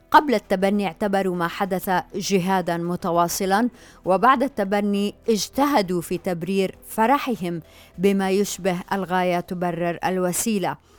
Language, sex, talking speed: Arabic, female, 100 wpm